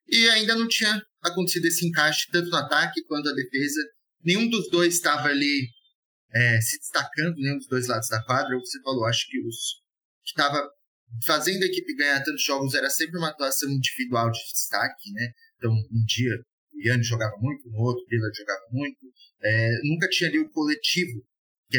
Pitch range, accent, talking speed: 115-170 Hz, Brazilian, 195 wpm